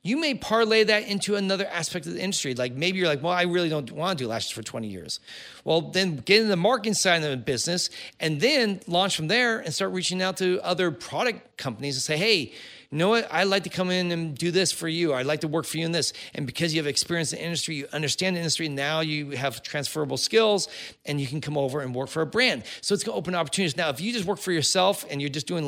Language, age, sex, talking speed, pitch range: English, 40-59, male, 270 wpm, 145-185 Hz